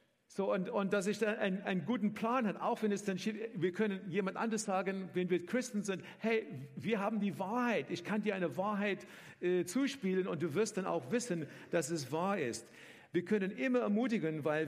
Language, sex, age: German, male, 50-69